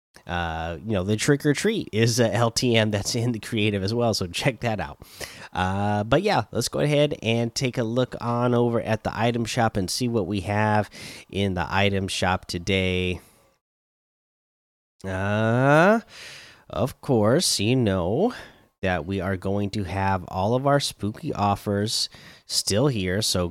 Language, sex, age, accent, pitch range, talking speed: English, male, 30-49, American, 95-130 Hz, 160 wpm